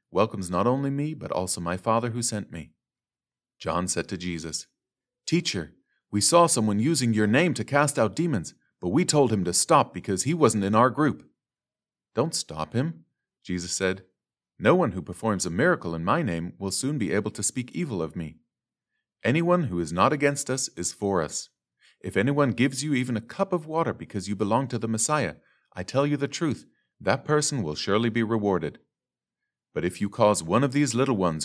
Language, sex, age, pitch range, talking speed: English, male, 40-59, 95-135 Hz, 200 wpm